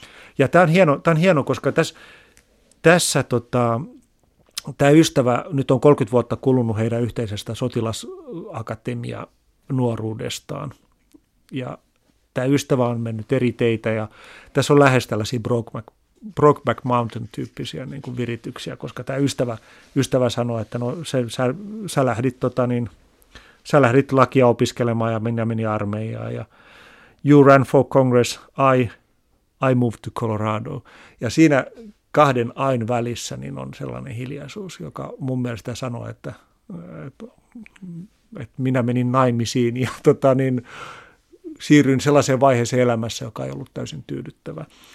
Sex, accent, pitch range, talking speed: male, native, 115-140 Hz, 130 wpm